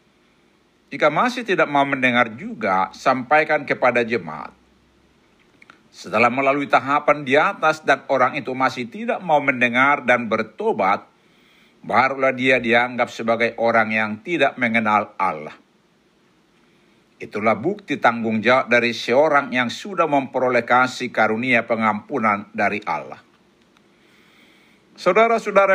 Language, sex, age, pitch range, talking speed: Indonesian, male, 60-79, 120-145 Hz, 110 wpm